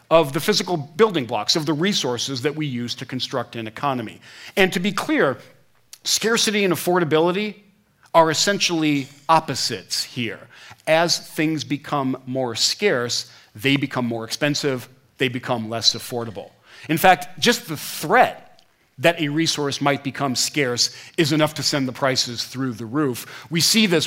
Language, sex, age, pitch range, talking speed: English, male, 40-59, 125-160 Hz, 155 wpm